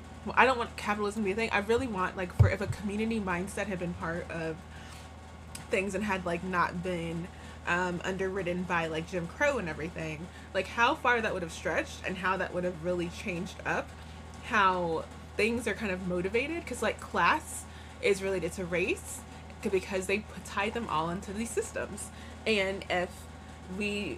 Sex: female